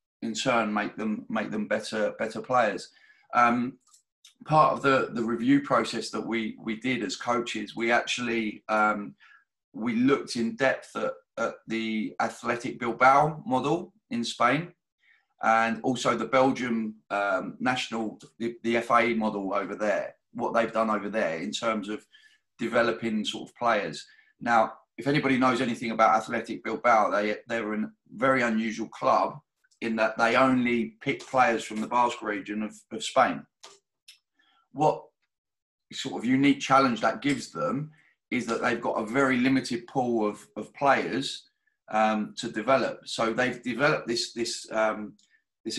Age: 30-49